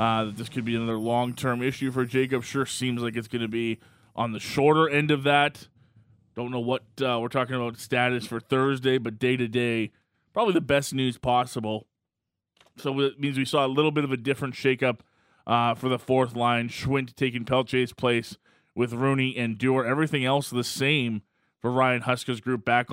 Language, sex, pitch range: English, male, 115-135 Hz